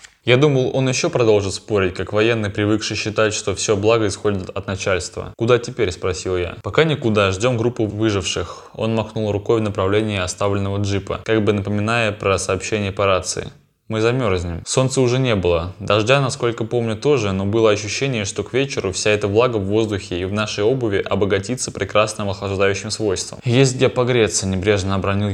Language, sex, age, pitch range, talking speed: Russian, male, 20-39, 100-125 Hz, 175 wpm